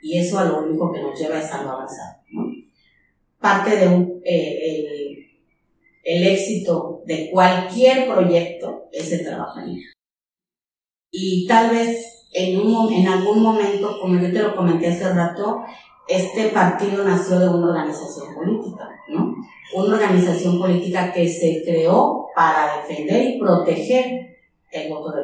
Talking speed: 145 wpm